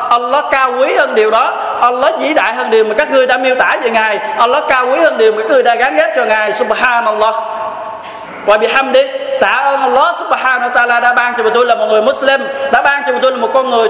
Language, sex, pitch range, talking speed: Vietnamese, male, 210-255 Hz, 255 wpm